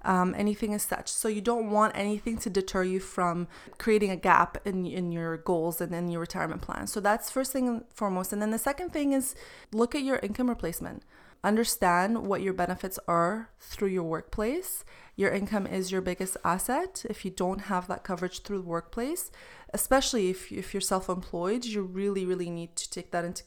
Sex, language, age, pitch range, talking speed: female, English, 20-39, 180-220 Hz, 195 wpm